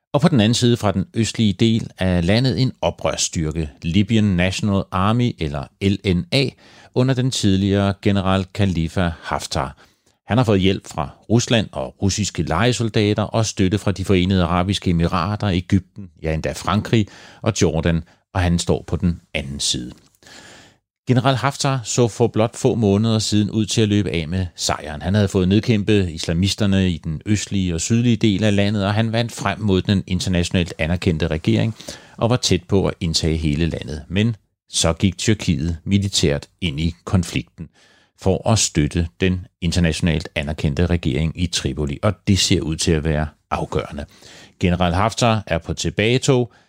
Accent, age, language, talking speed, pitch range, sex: native, 40-59, Danish, 165 wpm, 85-110 Hz, male